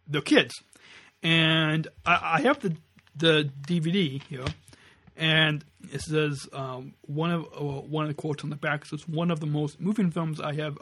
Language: English